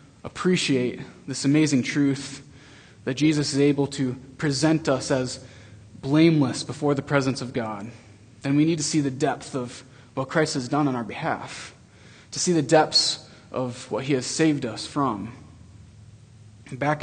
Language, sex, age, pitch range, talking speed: English, male, 20-39, 130-155 Hz, 160 wpm